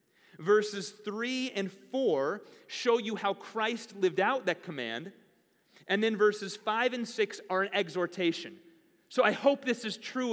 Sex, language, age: male, English, 30-49